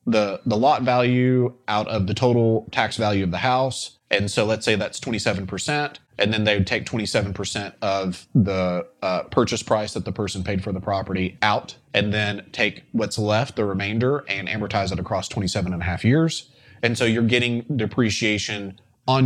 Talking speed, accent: 185 wpm, American